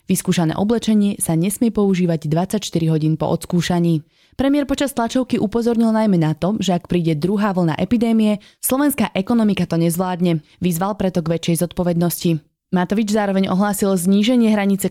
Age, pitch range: 20-39, 170-215 Hz